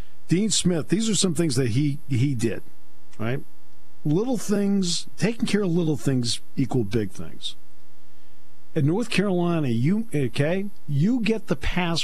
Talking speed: 150 wpm